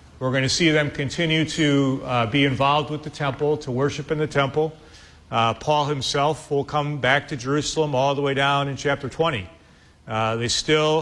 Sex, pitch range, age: male, 120-150 Hz, 40-59